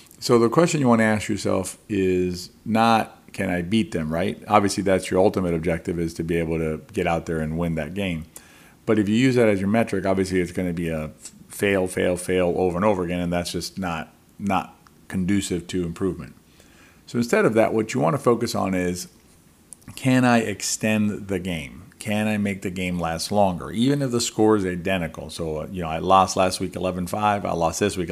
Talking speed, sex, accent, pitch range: 220 wpm, male, American, 90-105 Hz